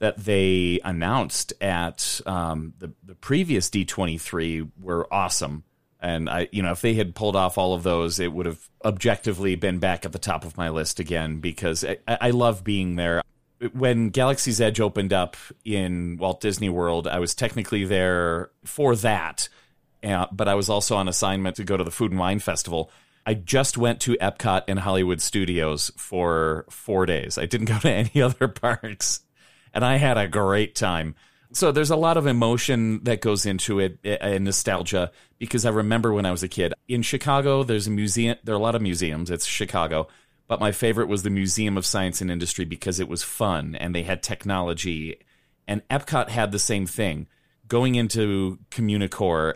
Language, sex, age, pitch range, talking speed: English, male, 30-49, 90-115 Hz, 190 wpm